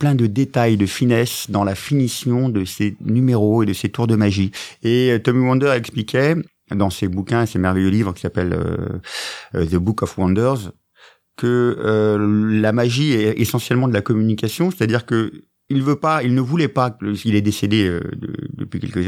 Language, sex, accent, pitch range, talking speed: French, male, French, 105-130 Hz, 190 wpm